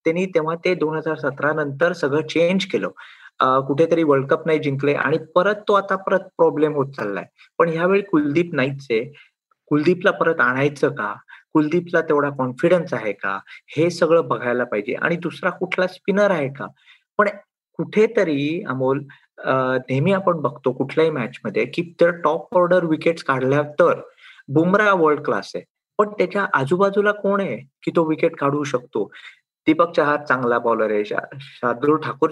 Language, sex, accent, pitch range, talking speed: Marathi, male, native, 140-185 Hz, 155 wpm